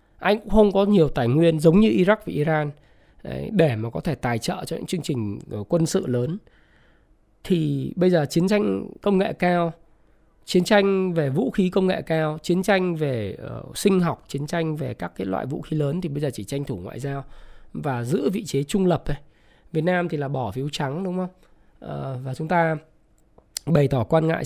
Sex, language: male, Vietnamese